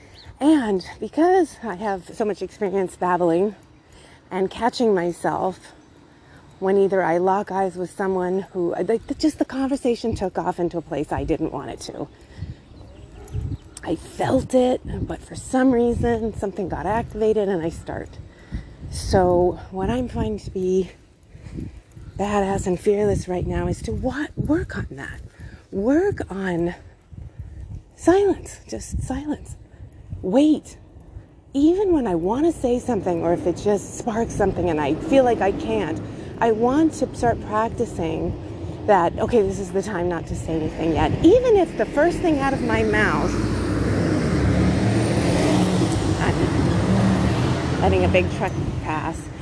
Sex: female